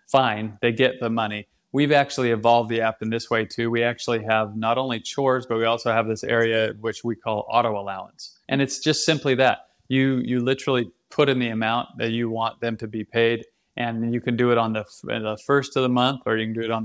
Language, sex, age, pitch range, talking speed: English, male, 30-49, 115-135 Hz, 240 wpm